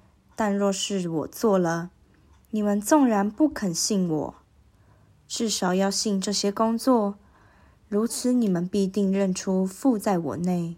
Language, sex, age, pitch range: Chinese, female, 20-39, 170-230 Hz